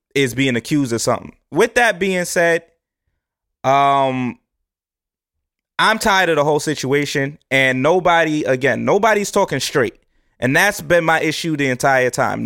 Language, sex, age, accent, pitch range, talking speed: English, male, 20-39, American, 140-200 Hz, 145 wpm